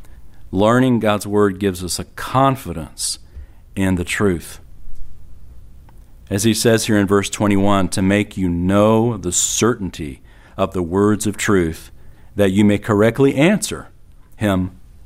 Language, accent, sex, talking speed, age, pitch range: English, American, male, 135 wpm, 50-69, 90-120 Hz